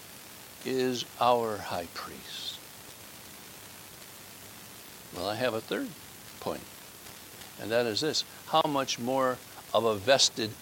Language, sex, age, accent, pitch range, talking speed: English, male, 60-79, American, 120-195 Hz, 115 wpm